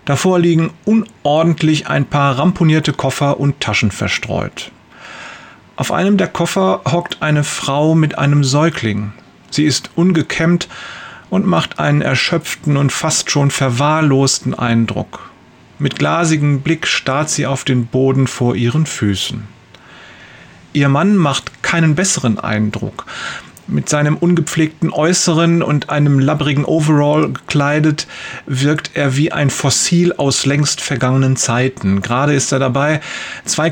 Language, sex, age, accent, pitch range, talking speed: German, male, 40-59, German, 135-165 Hz, 130 wpm